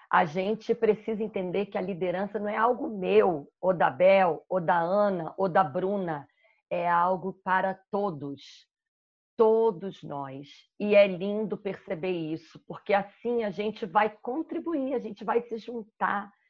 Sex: female